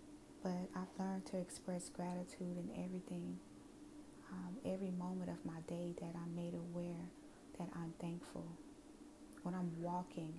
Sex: female